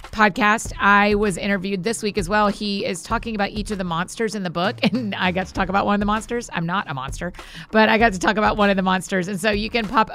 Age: 30-49